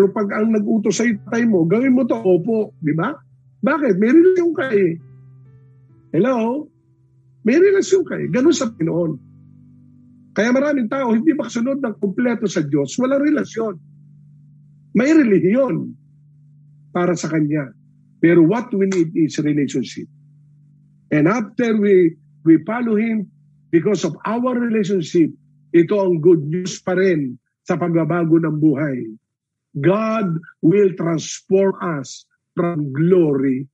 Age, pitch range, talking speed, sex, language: 50-69, 150-215 Hz, 130 wpm, male, English